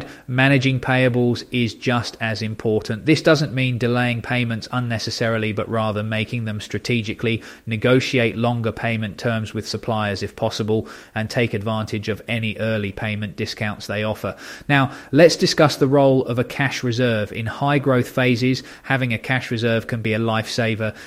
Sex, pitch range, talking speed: male, 110-125 Hz, 160 wpm